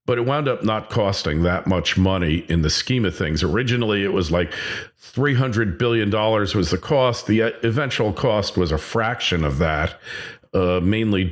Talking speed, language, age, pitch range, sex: 175 wpm, English, 50-69, 95-115 Hz, male